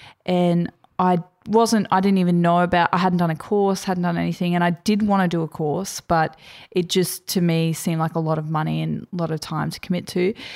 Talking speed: 245 wpm